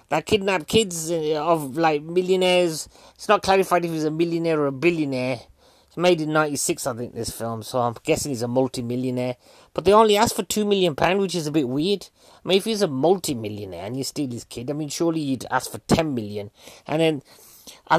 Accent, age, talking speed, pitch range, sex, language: British, 30-49, 215 wpm, 125-160 Hz, male, English